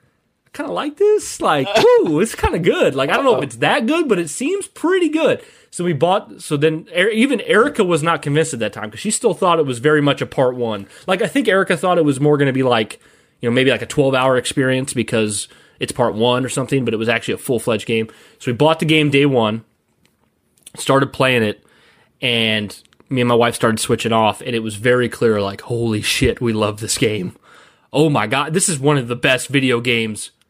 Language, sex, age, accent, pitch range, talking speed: English, male, 20-39, American, 120-165 Hz, 240 wpm